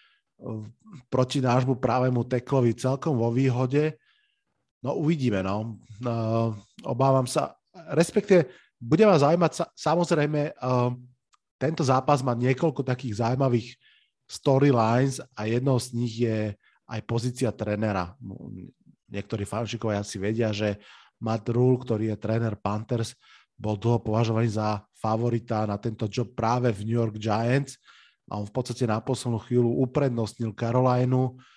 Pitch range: 115-130 Hz